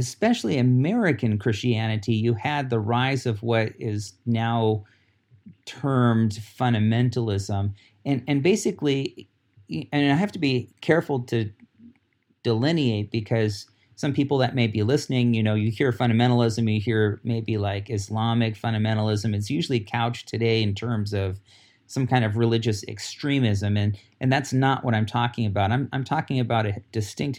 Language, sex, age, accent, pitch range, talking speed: English, male, 40-59, American, 105-125 Hz, 150 wpm